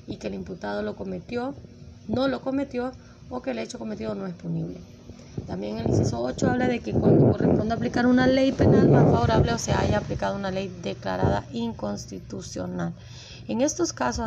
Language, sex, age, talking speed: Spanish, female, 30-49, 180 wpm